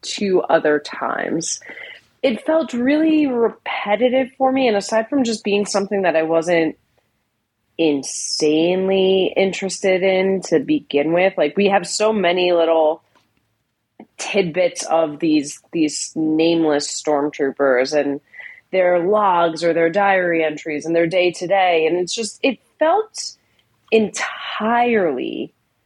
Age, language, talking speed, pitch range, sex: 30-49, English, 125 wpm, 155-230 Hz, female